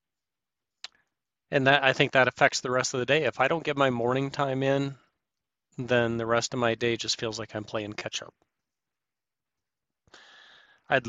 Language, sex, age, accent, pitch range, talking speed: English, male, 40-59, American, 115-145 Hz, 175 wpm